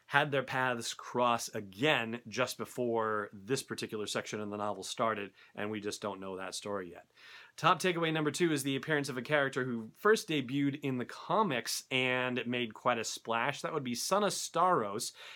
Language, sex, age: English, male, 30-49